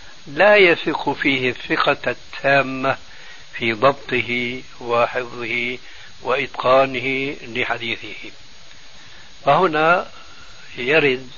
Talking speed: 65 wpm